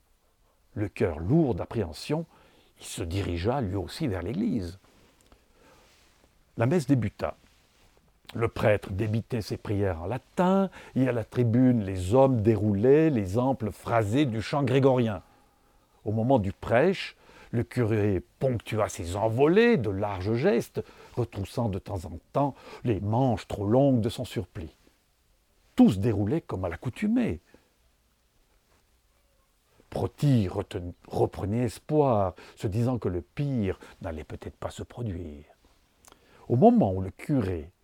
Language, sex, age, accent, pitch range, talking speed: French, male, 60-79, French, 95-125 Hz, 130 wpm